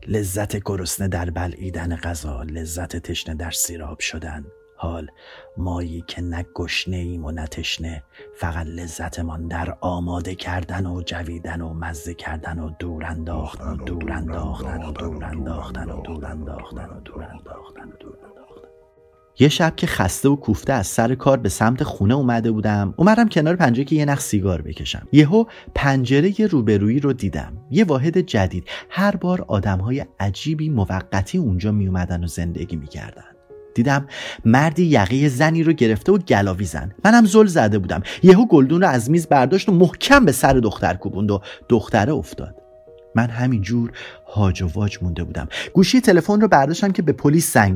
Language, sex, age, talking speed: Persian, male, 30-49, 150 wpm